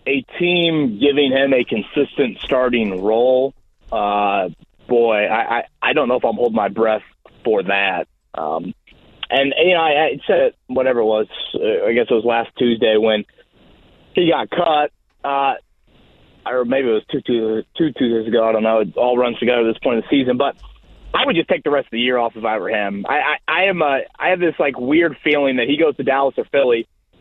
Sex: male